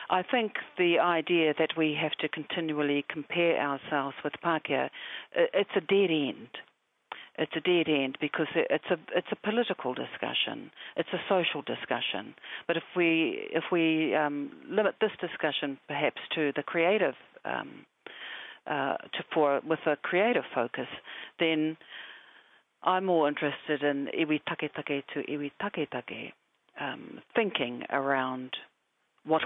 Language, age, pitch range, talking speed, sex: English, 50-69, 140-175 Hz, 140 wpm, female